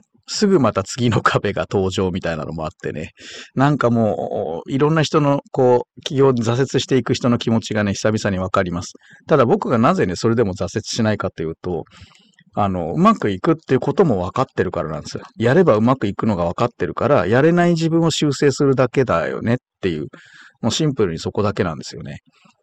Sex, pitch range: male, 100-140 Hz